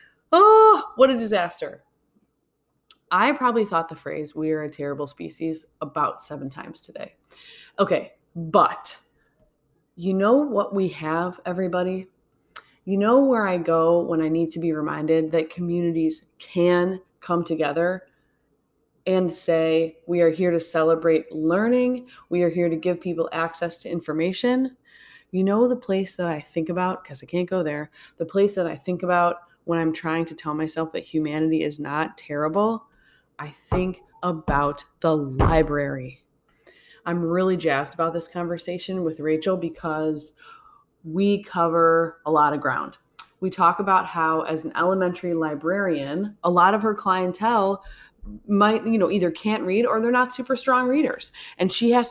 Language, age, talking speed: English, 20-39, 160 wpm